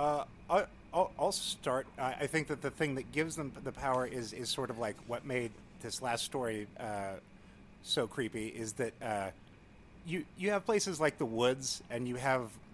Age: 30-49